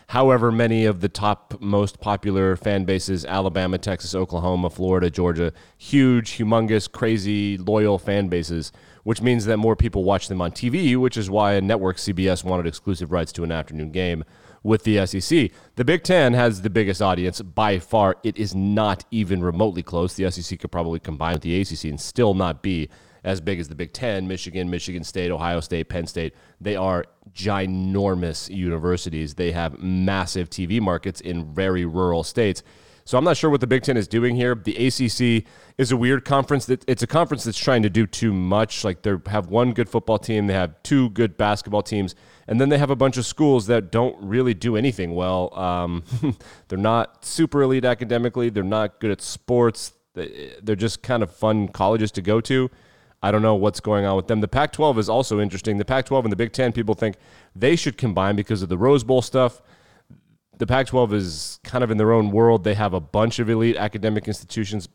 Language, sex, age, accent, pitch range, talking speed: English, male, 30-49, American, 90-115 Hz, 200 wpm